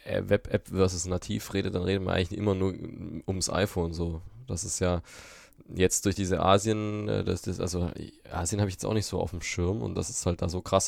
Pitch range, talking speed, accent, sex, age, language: 90-105 Hz, 220 wpm, German, male, 20-39, German